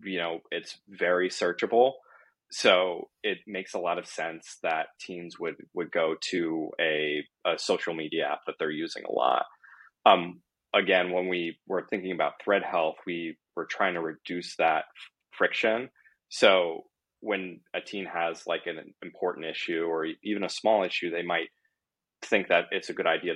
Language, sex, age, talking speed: English, male, 20-39, 170 wpm